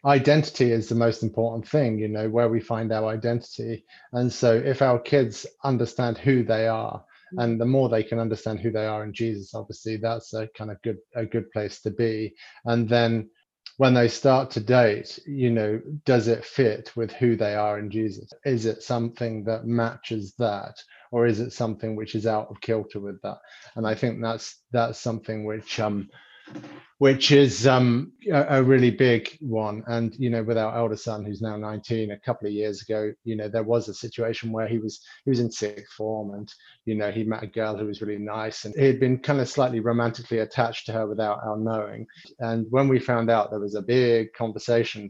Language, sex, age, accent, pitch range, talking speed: English, male, 30-49, British, 110-120 Hz, 210 wpm